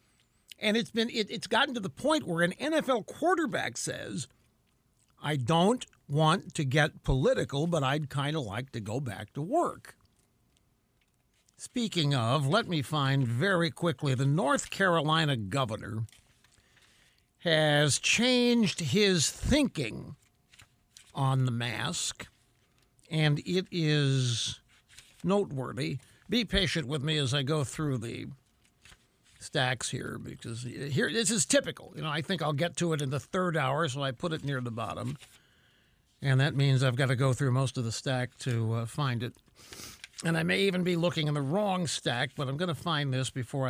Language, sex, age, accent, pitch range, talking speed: English, male, 60-79, American, 130-170 Hz, 165 wpm